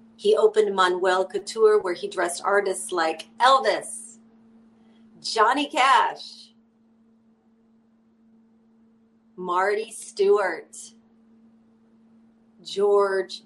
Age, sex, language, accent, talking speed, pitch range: 40-59, female, English, American, 65 wpm, 200-230 Hz